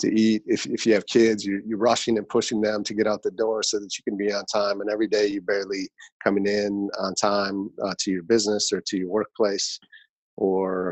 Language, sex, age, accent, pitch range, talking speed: English, male, 30-49, American, 95-110 Hz, 235 wpm